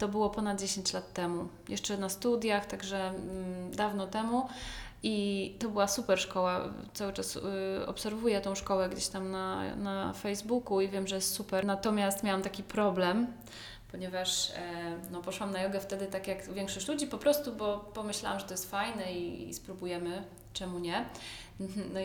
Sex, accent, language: female, native, Polish